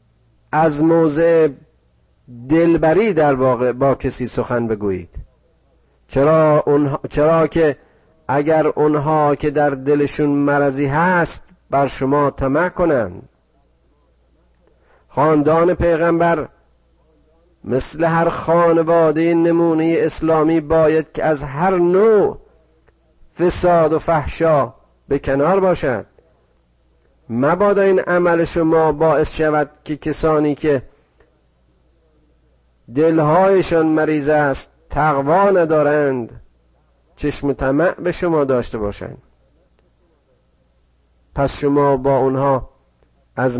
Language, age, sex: Persian, 50-69, male